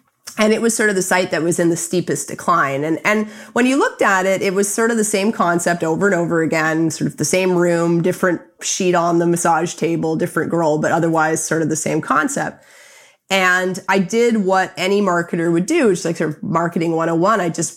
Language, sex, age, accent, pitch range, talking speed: English, female, 30-49, American, 170-205 Hz, 230 wpm